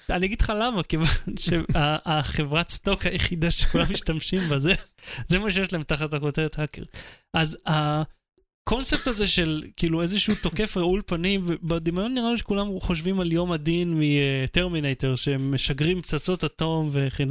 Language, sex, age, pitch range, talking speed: Hebrew, male, 30-49, 155-205 Hz, 140 wpm